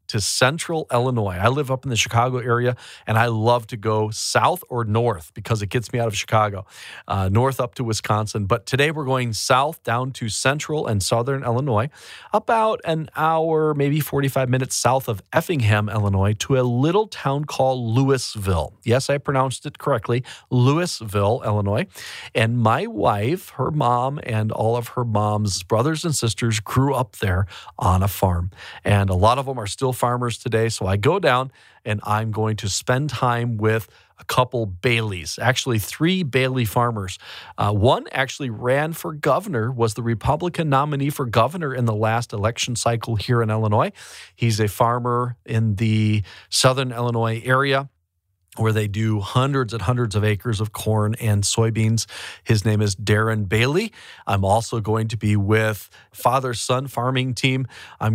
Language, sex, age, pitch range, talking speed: English, male, 40-59, 105-130 Hz, 170 wpm